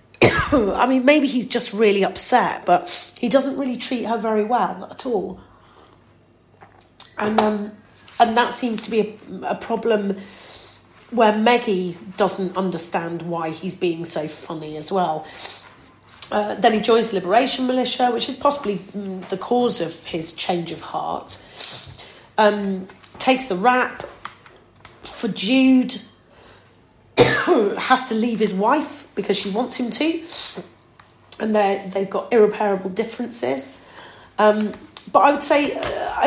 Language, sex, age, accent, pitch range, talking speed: English, female, 40-59, British, 195-250 Hz, 140 wpm